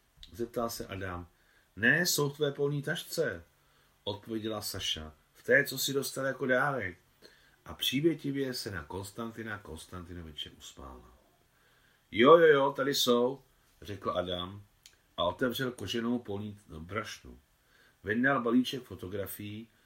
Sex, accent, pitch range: male, native, 90-120 Hz